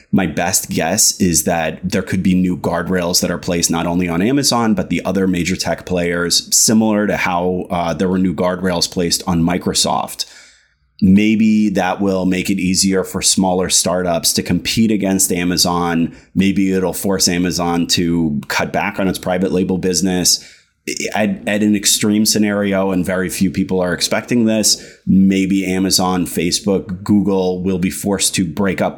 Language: English